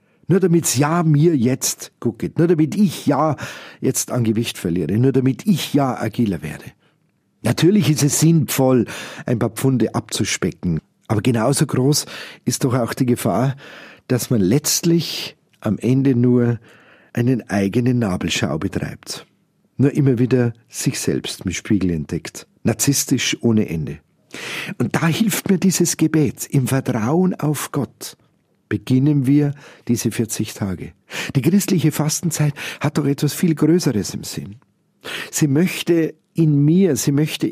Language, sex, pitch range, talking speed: German, male, 125-165 Hz, 140 wpm